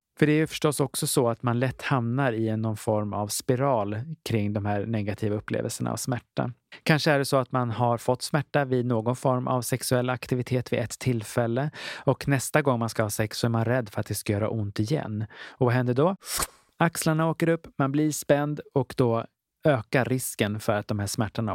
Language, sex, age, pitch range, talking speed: Swedish, male, 30-49, 110-135 Hz, 215 wpm